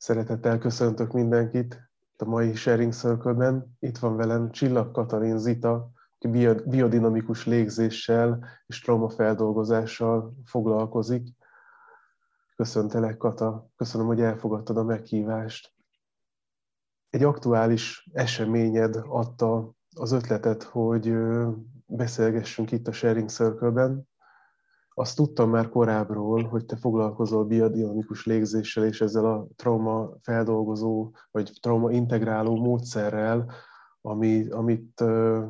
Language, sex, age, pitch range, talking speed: Hungarian, male, 20-39, 110-120 Hz, 100 wpm